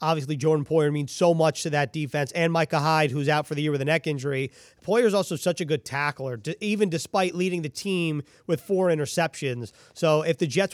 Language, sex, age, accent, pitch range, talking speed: English, male, 30-49, American, 150-180 Hz, 220 wpm